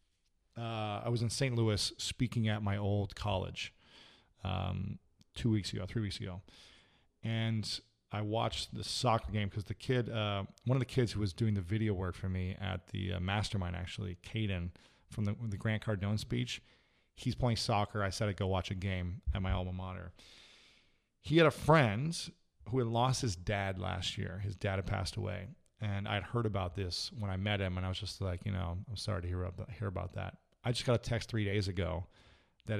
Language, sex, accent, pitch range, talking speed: English, male, American, 95-110 Hz, 210 wpm